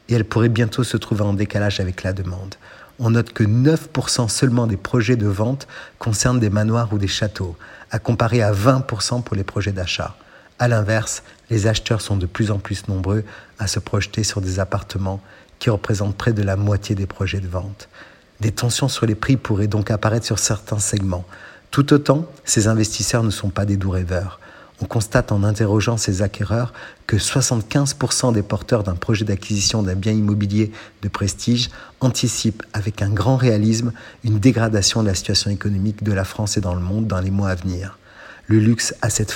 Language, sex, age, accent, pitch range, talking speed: French, male, 50-69, French, 100-115 Hz, 190 wpm